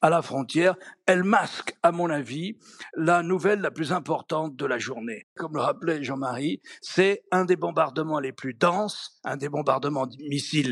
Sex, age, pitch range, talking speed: male, 60-79, 135-185 Hz, 180 wpm